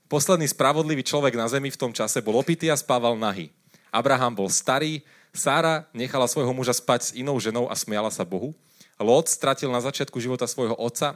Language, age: Slovak, 30-49